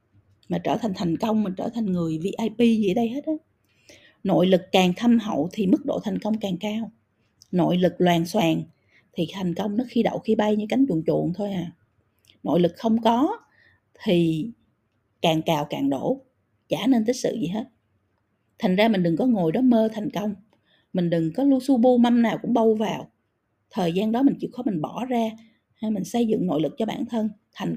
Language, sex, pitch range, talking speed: Vietnamese, female, 170-240 Hz, 215 wpm